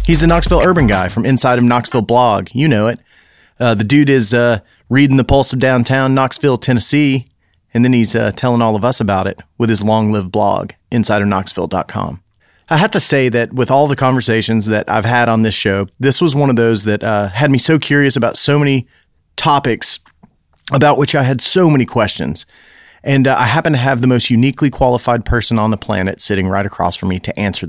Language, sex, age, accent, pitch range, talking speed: English, male, 30-49, American, 110-135 Hz, 210 wpm